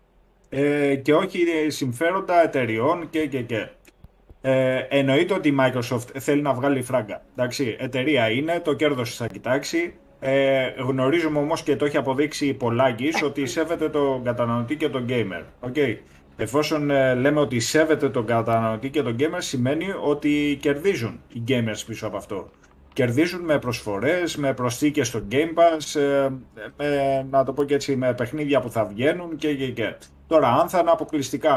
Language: Greek